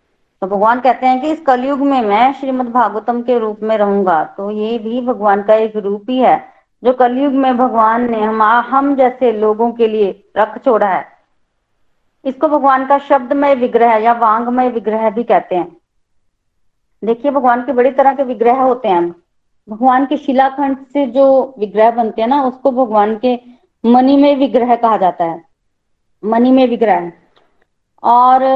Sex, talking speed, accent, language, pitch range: female, 170 wpm, native, Hindi, 220-270 Hz